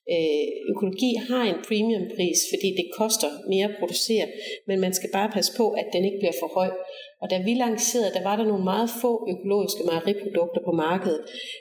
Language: Danish